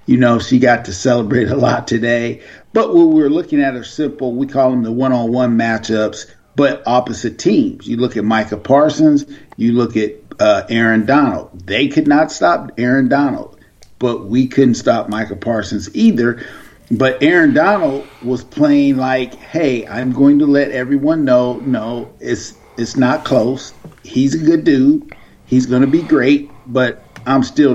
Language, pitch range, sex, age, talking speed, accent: English, 120-155 Hz, male, 50-69, 170 wpm, American